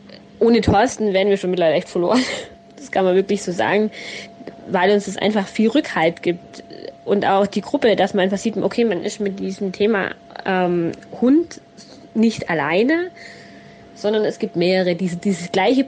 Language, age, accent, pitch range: German, 20-39, German, 190-230 Hz